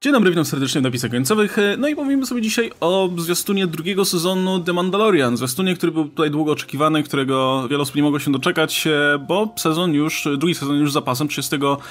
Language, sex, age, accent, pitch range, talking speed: Polish, male, 20-39, native, 140-190 Hz, 195 wpm